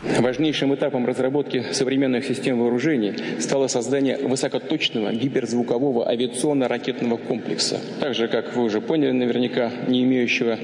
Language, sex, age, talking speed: Russian, male, 40-59, 120 wpm